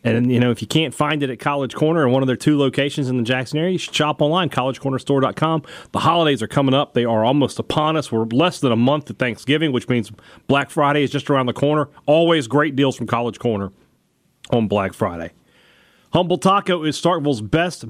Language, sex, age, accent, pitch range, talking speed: English, male, 40-59, American, 125-160 Hz, 220 wpm